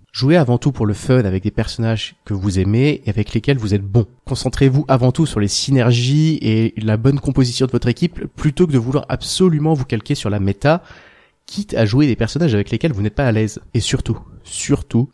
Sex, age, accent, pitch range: male, 20-39, French, 110-145 Hz